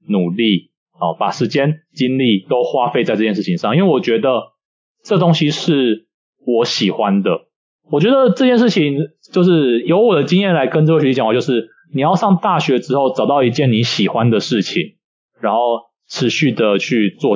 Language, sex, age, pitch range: Chinese, male, 20-39, 115-175 Hz